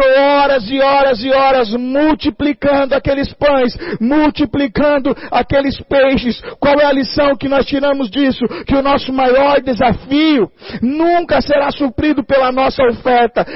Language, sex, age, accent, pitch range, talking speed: Portuguese, male, 50-69, Brazilian, 255-290 Hz, 135 wpm